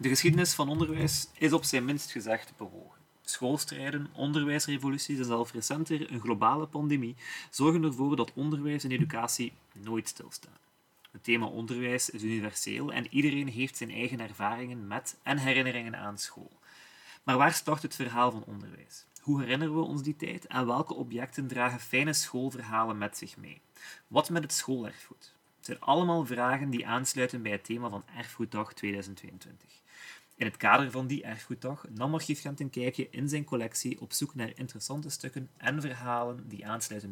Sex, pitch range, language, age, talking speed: male, 115-145 Hz, Dutch, 30-49, 170 wpm